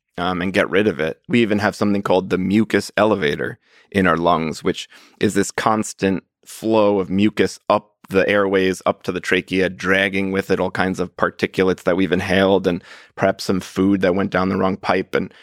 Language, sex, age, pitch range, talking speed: English, male, 30-49, 95-105 Hz, 200 wpm